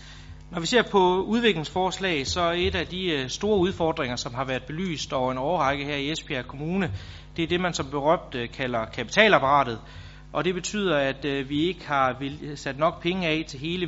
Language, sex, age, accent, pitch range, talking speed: Danish, male, 30-49, native, 130-165 Hz, 190 wpm